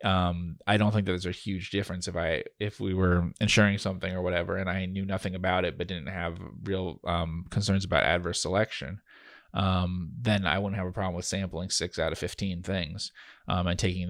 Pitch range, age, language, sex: 85-100 Hz, 20-39, English, male